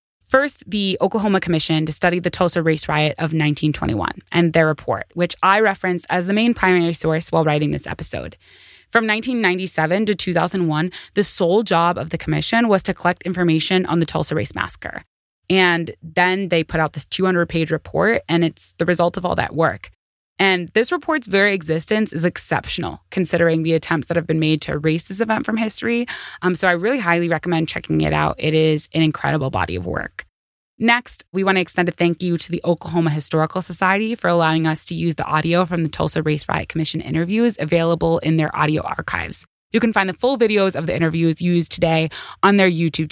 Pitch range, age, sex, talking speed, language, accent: 160-190 Hz, 20-39, female, 200 wpm, English, American